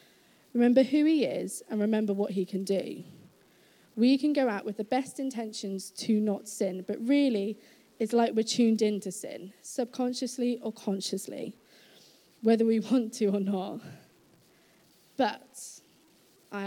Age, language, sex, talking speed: 20-39, English, female, 150 wpm